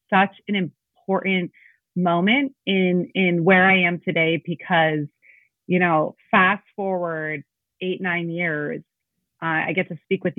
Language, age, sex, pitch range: English, 30-49, female, 170-190 Hz